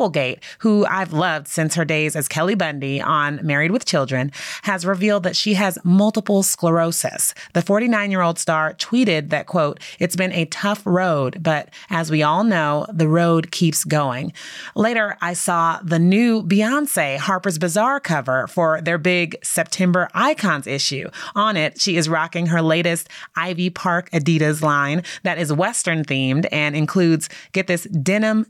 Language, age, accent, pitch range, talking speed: English, 30-49, American, 155-200 Hz, 155 wpm